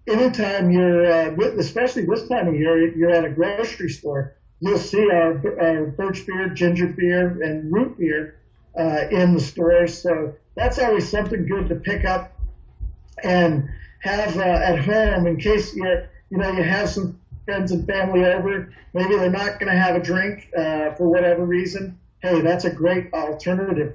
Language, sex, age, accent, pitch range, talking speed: English, male, 50-69, American, 160-185 Hz, 180 wpm